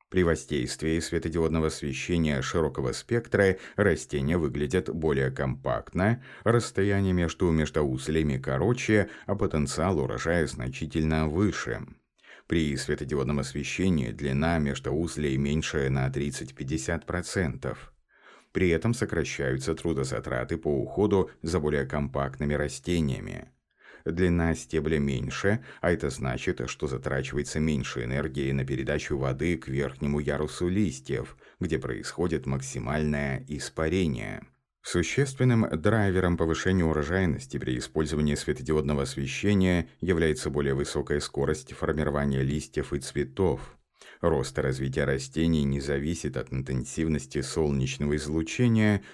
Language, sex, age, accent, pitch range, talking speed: Russian, male, 30-49, native, 70-85 Hz, 105 wpm